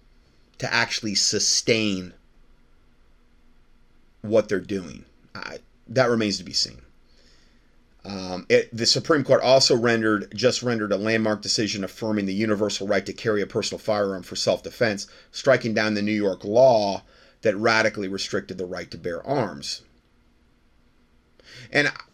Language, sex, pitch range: English, male, 100-125 Hz